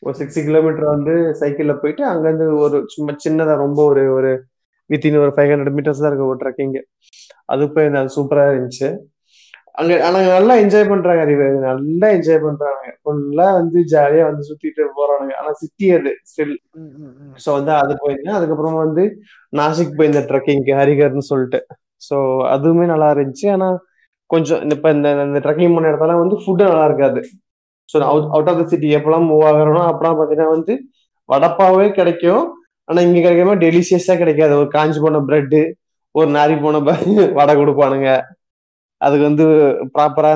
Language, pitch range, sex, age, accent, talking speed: Tamil, 145-165 Hz, male, 20-39, native, 145 wpm